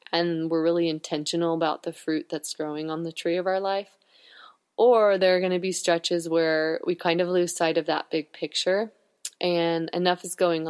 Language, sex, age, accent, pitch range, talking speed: English, female, 20-39, American, 165-190 Hz, 200 wpm